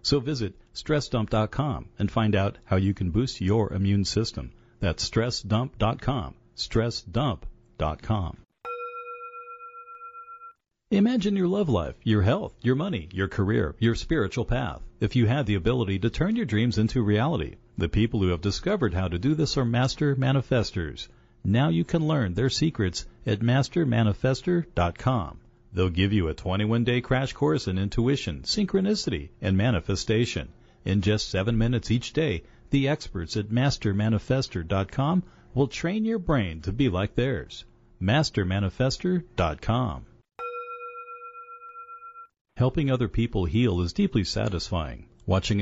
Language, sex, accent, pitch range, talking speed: English, male, American, 100-135 Hz, 130 wpm